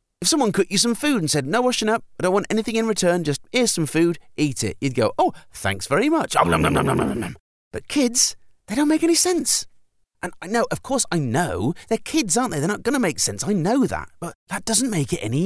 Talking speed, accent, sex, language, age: 240 wpm, British, male, English, 30-49